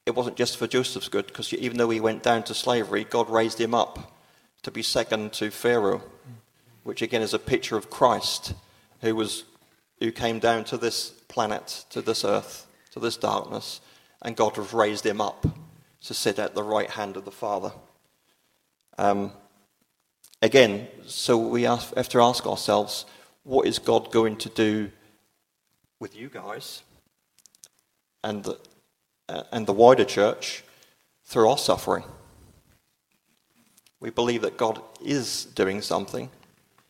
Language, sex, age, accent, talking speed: English, male, 40-59, British, 150 wpm